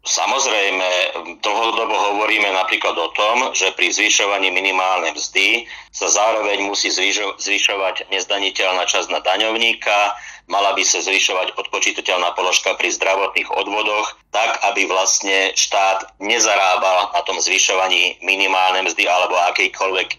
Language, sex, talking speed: Slovak, male, 120 wpm